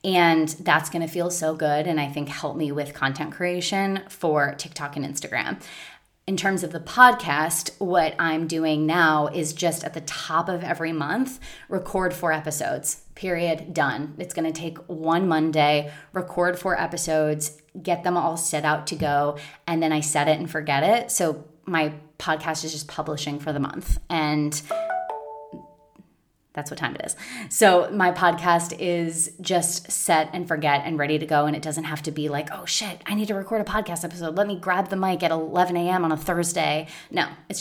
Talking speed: 195 wpm